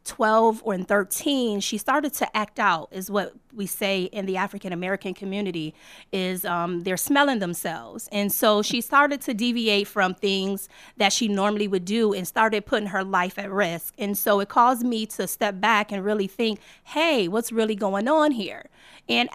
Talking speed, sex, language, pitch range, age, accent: 185 wpm, female, English, 195-245 Hz, 30-49, American